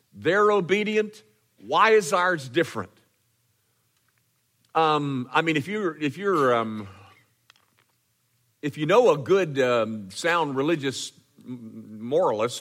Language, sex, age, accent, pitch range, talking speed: English, male, 50-69, American, 120-180 Hz, 110 wpm